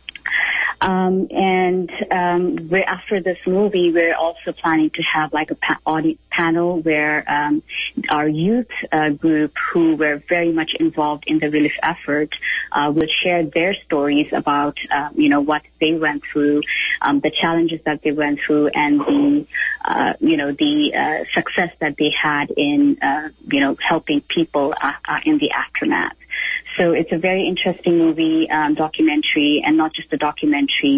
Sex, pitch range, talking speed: female, 150-190 Hz, 165 wpm